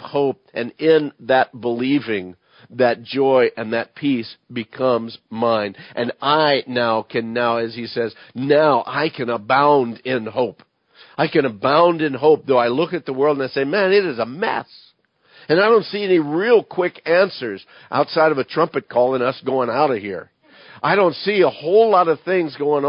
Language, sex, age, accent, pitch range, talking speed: English, male, 50-69, American, 130-160 Hz, 190 wpm